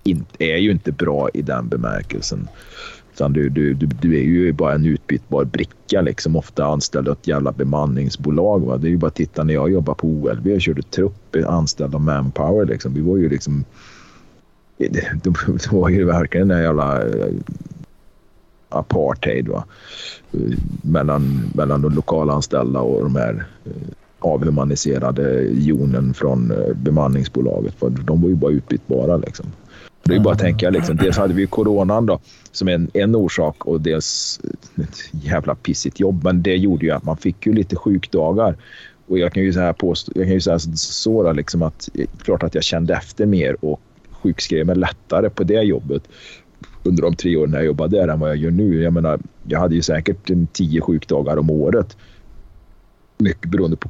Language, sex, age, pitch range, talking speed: Swedish, male, 40-59, 75-90 Hz, 175 wpm